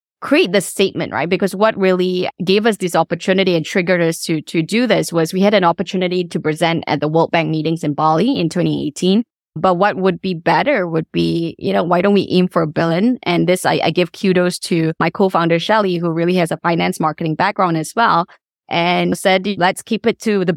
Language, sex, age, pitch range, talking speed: English, female, 20-39, 165-195 Hz, 220 wpm